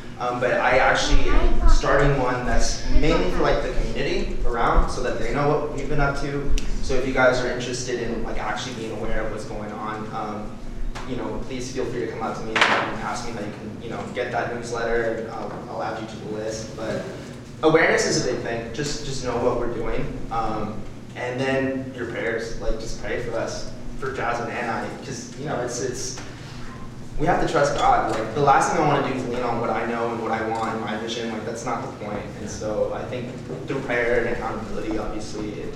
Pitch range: 115-130 Hz